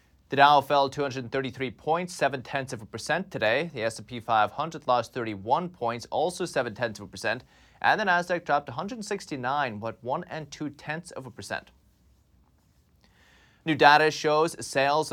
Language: English